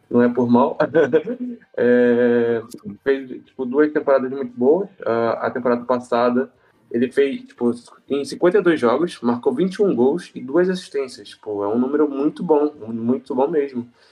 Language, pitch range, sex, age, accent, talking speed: Portuguese, 120-140 Hz, male, 20-39, Brazilian, 150 wpm